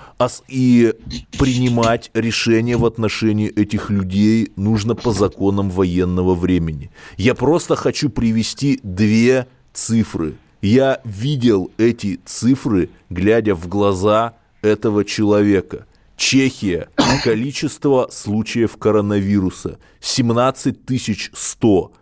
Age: 20-39